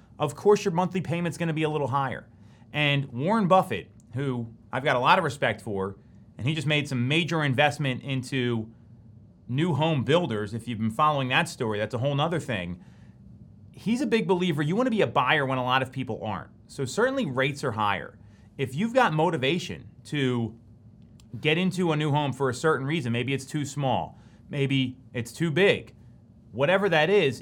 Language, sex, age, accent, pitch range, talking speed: English, male, 30-49, American, 120-165 Hz, 195 wpm